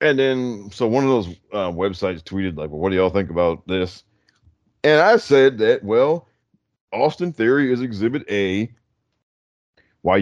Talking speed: 165 wpm